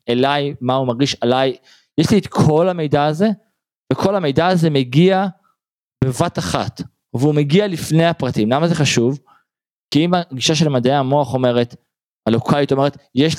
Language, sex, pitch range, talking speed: Hebrew, male, 125-160 Hz, 150 wpm